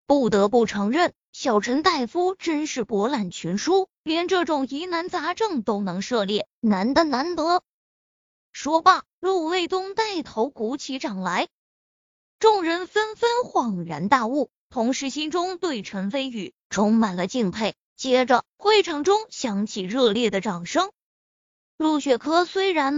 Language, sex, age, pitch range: Chinese, female, 20-39, 225-355 Hz